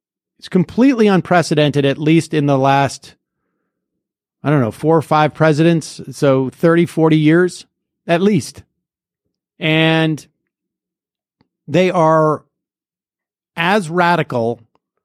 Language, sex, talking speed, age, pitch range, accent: English, male, 105 wpm, 50-69, 135-165 Hz, American